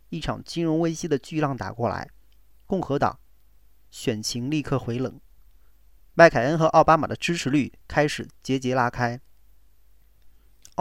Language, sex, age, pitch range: Chinese, male, 40-59, 115-165 Hz